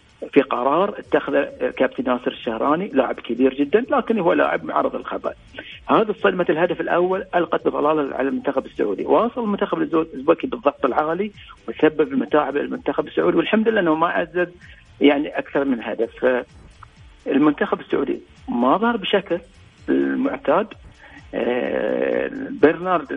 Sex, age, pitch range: male, 40-59, 140-185 Hz